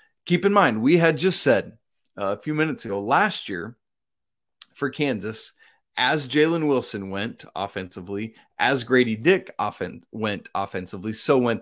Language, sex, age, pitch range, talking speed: English, male, 30-49, 105-140 Hz, 145 wpm